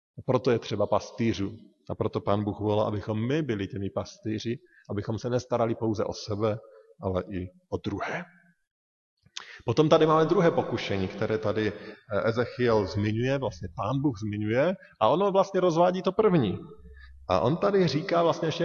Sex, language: male, Slovak